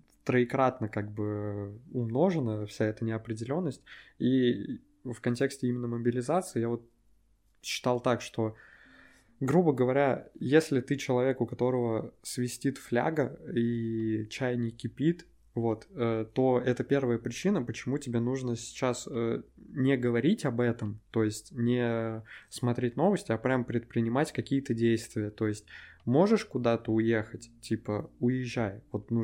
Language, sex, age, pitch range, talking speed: Russian, male, 20-39, 110-130 Hz, 125 wpm